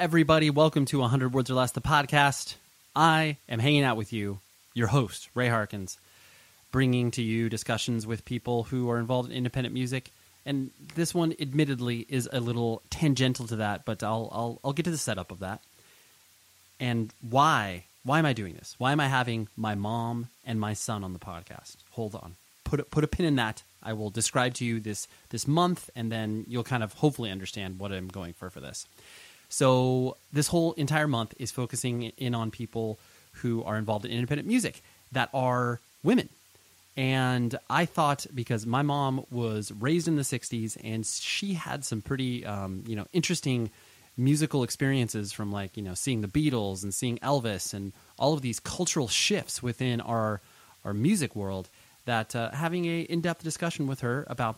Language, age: English, 30-49